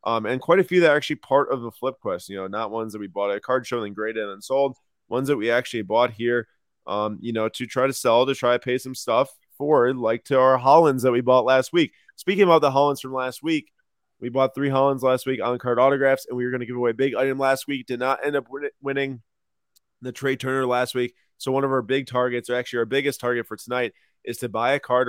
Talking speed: 275 wpm